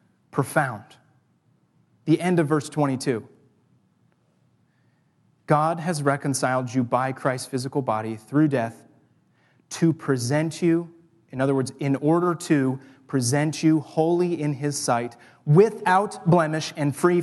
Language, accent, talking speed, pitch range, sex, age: English, American, 120 wpm, 140-185 Hz, male, 30-49